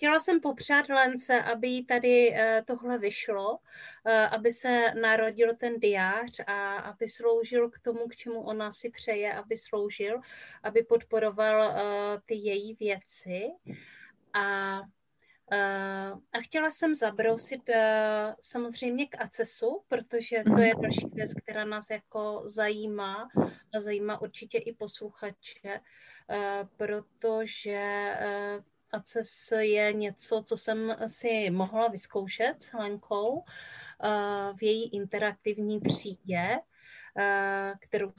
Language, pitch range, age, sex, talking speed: Czech, 200-230 Hz, 30-49, female, 120 wpm